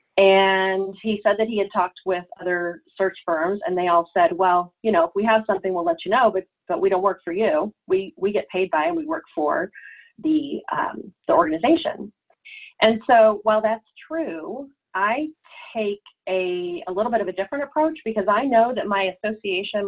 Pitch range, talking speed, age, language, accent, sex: 180-220 Hz, 200 wpm, 30-49, English, American, female